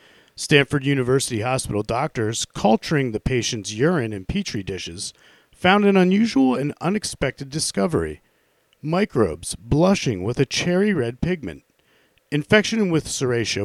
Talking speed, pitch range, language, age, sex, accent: 120 wpm, 110-155 Hz, English, 40-59, male, American